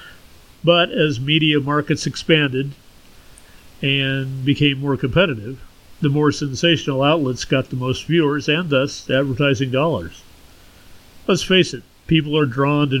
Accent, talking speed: American, 130 wpm